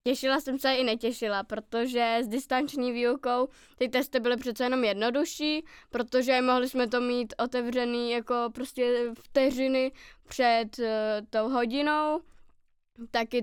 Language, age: Czech, 20-39